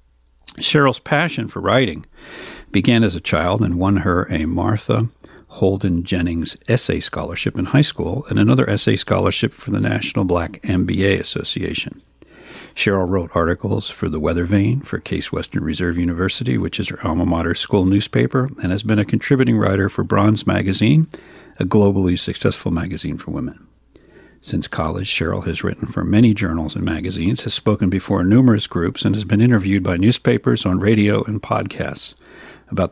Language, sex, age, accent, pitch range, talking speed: English, male, 50-69, American, 85-110 Hz, 165 wpm